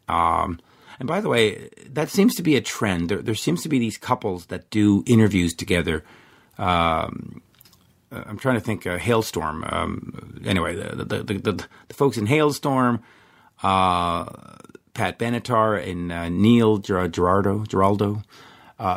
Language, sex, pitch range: English, male, 95-115 Hz